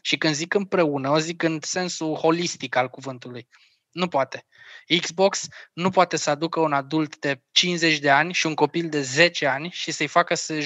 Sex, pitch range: male, 150-190 Hz